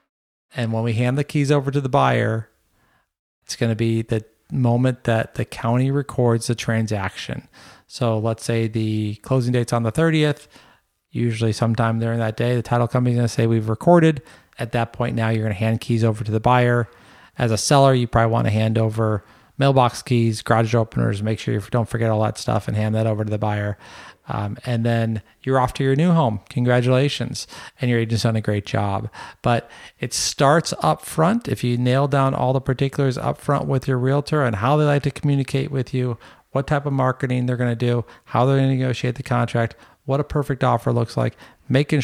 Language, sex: English, male